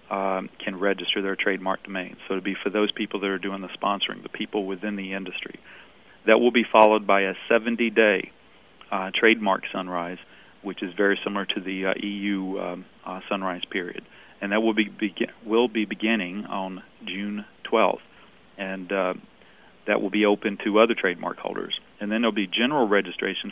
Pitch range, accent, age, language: 95-105 Hz, American, 40-59, English